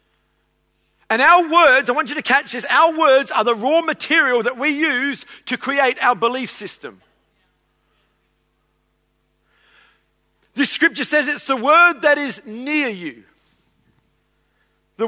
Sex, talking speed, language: male, 135 wpm, English